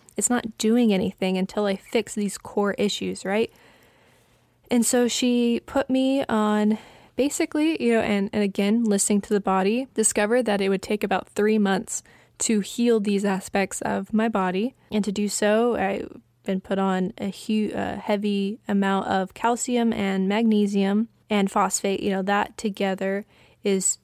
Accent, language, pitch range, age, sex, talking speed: American, English, 195-220 Hz, 20-39, female, 160 wpm